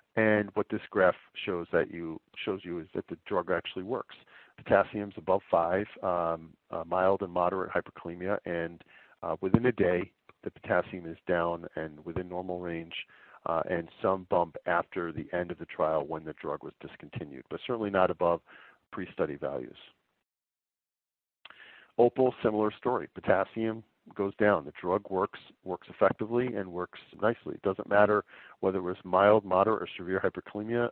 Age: 50-69